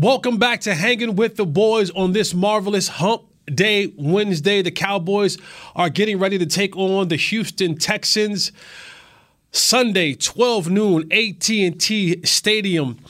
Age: 20-39